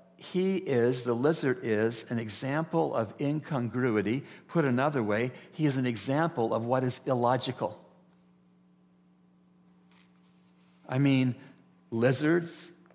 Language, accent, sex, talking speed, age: English, American, male, 105 wpm, 60-79